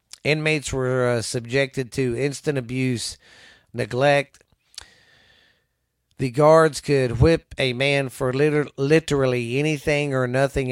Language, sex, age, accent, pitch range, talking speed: English, male, 40-59, American, 110-135 Hz, 105 wpm